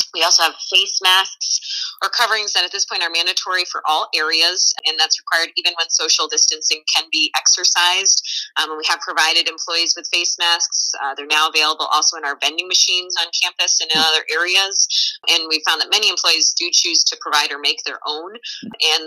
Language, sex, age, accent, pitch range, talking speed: English, female, 20-39, American, 150-180 Hz, 200 wpm